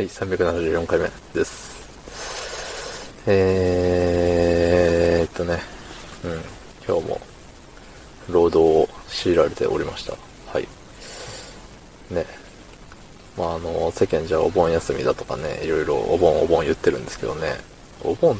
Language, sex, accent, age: Japanese, male, native, 20-39